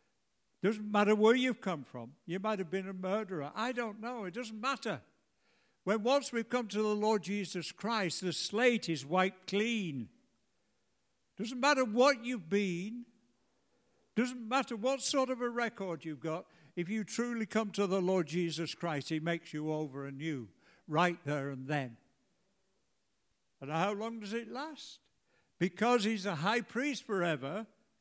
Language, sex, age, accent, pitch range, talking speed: English, male, 60-79, British, 150-225 Hz, 165 wpm